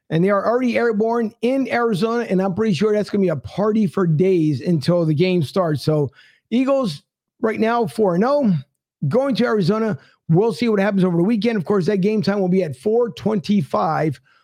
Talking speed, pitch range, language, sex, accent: 195 wpm, 180-225 Hz, English, male, American